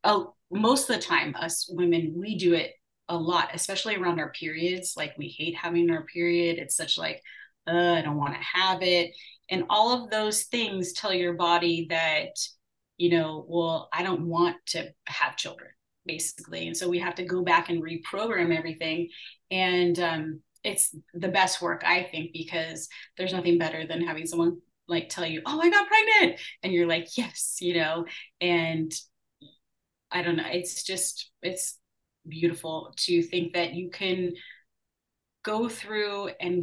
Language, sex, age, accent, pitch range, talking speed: English, female, 30-49, American, 165-180 Hz, 170 wpm